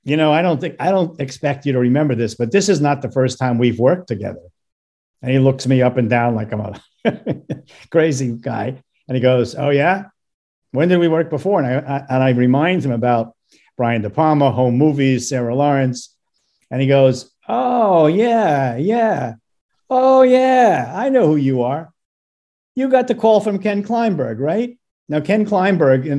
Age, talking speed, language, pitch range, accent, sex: 50-69, 190 wpm, English, 120-150 Hz, American, male